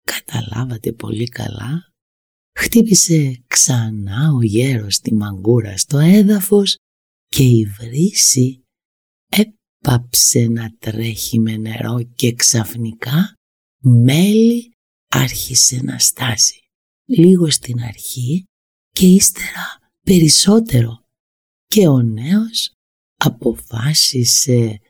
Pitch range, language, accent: 115-175 Hz, Greek, native